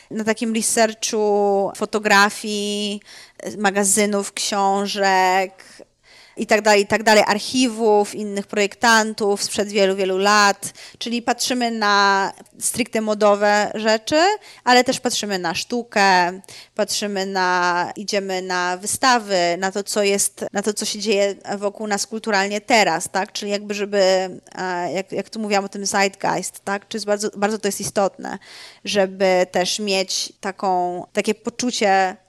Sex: female